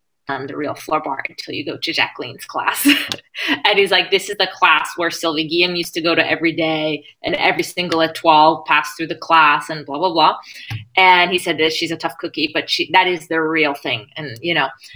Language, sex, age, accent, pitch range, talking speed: English, female, 20-39, American, 160-180 Hz, 230 wpm